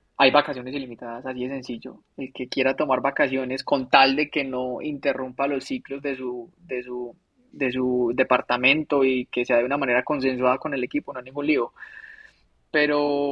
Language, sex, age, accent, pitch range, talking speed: Spanish, male, 20-39, Colombian, 130-150 Hz, 185 wpm